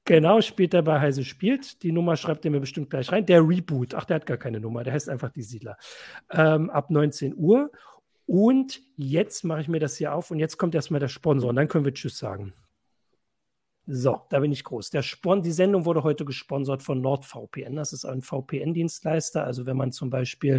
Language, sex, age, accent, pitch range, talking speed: German, male, 40-59, German, 140-165 Hz, 215 wpm